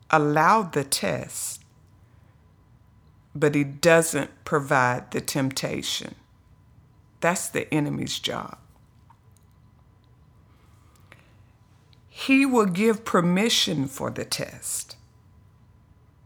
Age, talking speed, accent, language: 50-69, 75 wpm, American, English